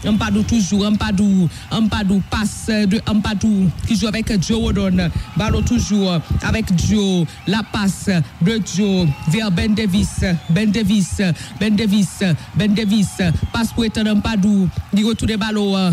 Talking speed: 140 wpm